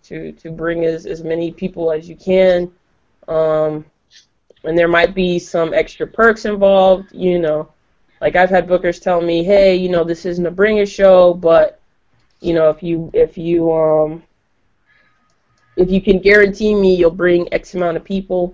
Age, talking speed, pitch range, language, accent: 20-39, 170 wpm, 165-190 Hz, English, American